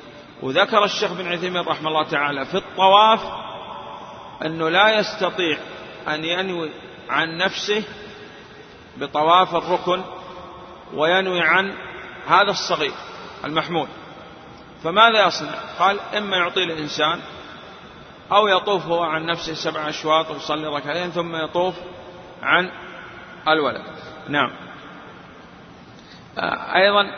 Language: Arabic